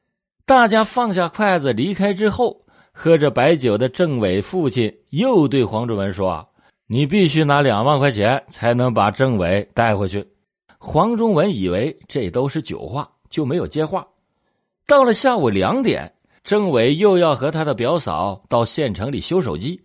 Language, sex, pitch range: Chinese, male, 105-175 Hz